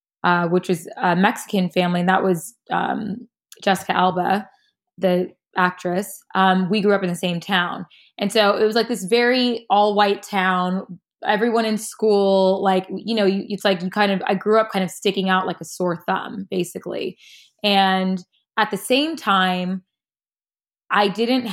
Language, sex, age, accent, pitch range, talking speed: English, female, 20-39, American, 180-205 Hz, 175 wpm